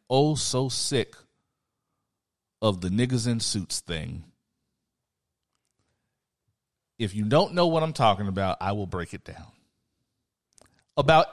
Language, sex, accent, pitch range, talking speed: English, male, American, 100-145 Hz, 120 wpm